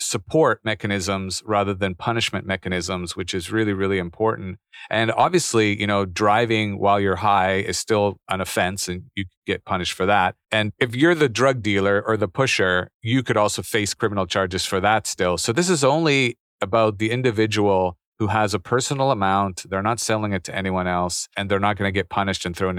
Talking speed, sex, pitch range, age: 200 wpm, male, 95-120 Hz, 40-59